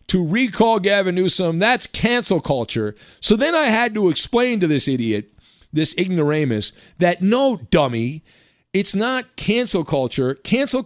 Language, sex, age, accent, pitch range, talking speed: English, male, 50-69, American, 150-225 Hz, 145 wpm